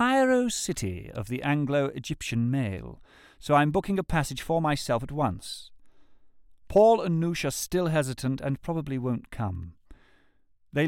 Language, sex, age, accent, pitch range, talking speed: English, male, 50-69, British, 100-165 Hz, 150 wpm